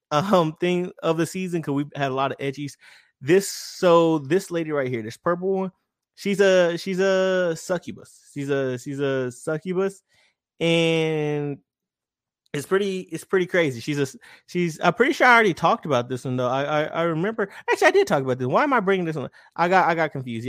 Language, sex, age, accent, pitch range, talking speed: English, male, 20-39, American, 135-180 Hz, 210 wpm